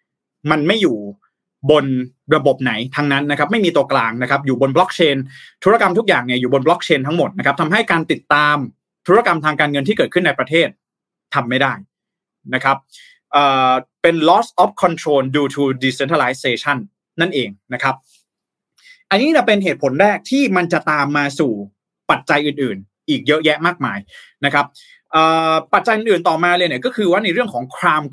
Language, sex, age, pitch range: Thai, male, 20-39, 140-190 Hz